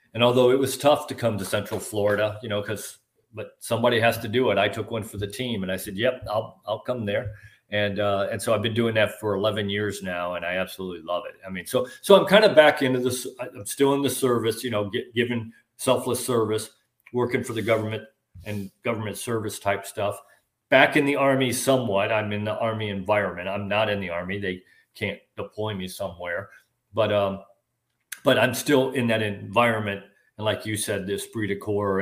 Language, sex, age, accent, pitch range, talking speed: English, male, 40-59, American, 100-115 Hz, 215 wpm